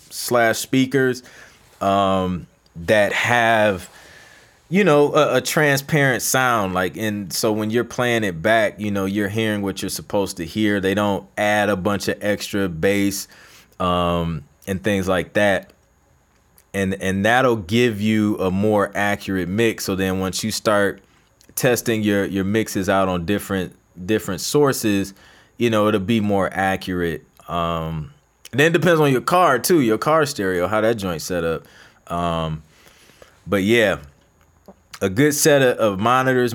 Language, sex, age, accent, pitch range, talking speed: English, male, 20-39, American, 95-120 Hz, 160 wpm